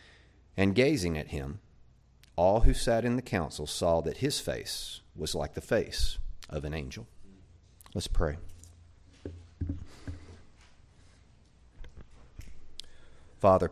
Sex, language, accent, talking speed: male, English, American, 105 wpm